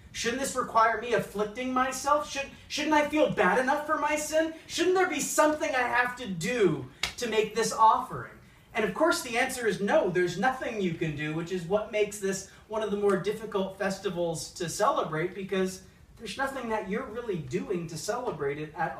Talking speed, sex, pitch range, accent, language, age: 195 wpm, male, 145-215 Hz, American, English, 40-59